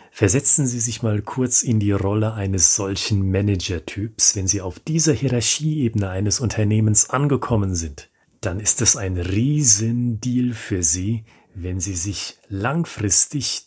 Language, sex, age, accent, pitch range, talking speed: German, male, 40-59, German, 100-125 Hz, 135 wpm